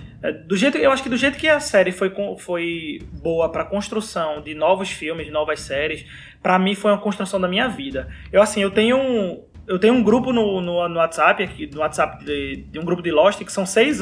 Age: 20-39